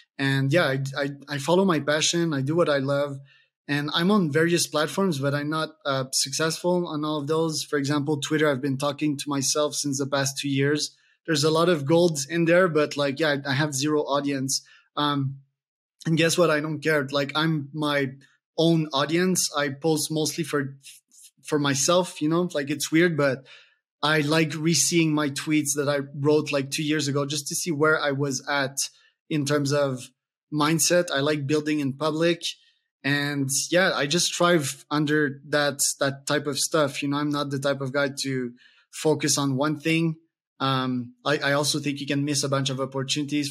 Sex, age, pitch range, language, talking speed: male, 20-39, 140-155 Hz, English, 195 wpm